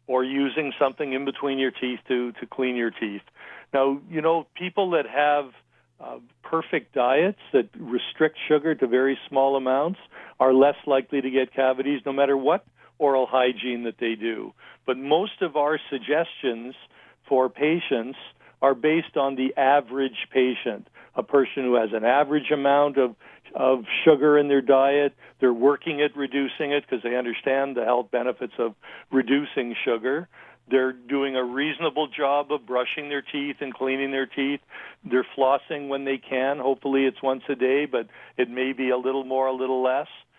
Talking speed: 170 wpm